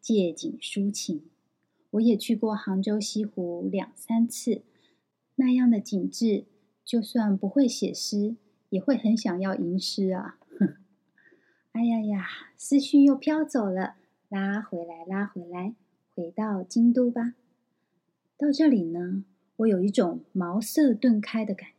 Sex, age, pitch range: female, 20-39, 195-240 Hz